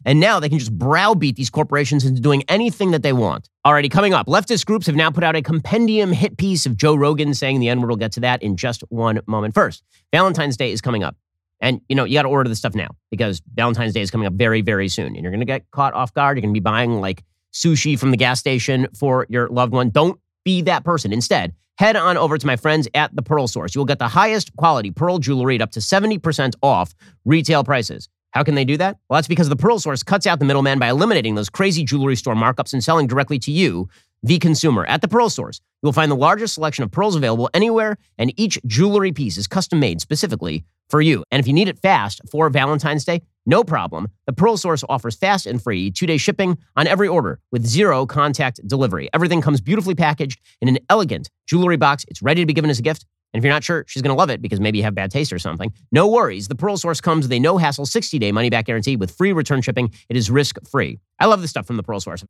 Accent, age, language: American, 30-49, English